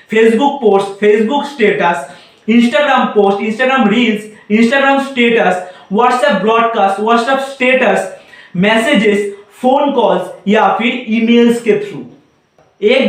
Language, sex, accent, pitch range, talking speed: Hindi, male, native, 200-255 Hz, 105 wpm